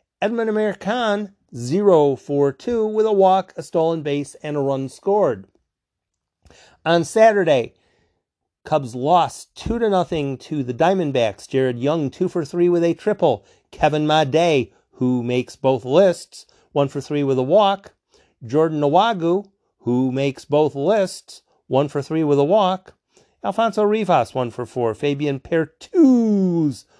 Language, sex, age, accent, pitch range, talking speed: English, male, 40-59, American, 145-190 Hz, 140 wpm